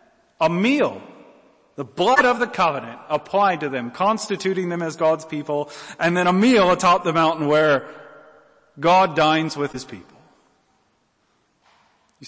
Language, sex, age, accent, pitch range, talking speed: English, male, 40-59, American, 155-220 Hz, 140 wpm